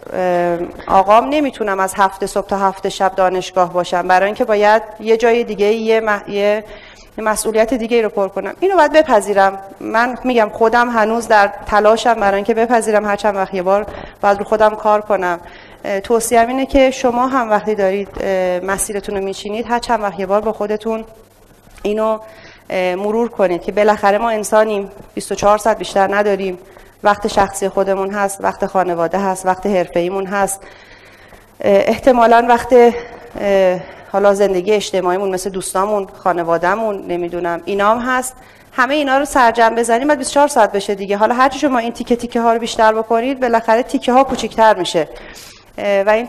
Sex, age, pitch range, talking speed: female, 30-49, 195-230 Hz, 155 wpm